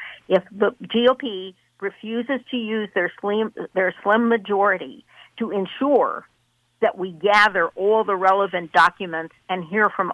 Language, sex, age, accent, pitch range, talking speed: English, female, 50-69, American, 185-225 Hz, 130 wpm